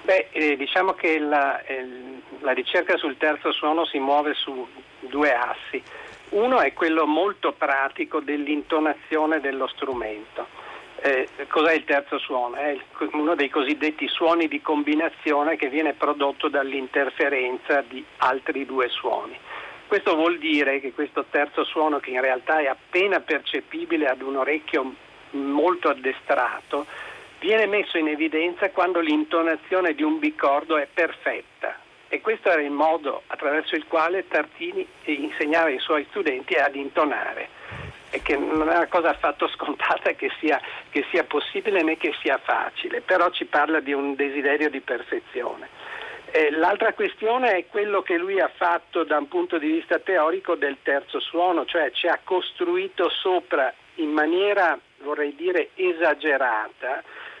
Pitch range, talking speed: 145-205 Hz, 145 wpm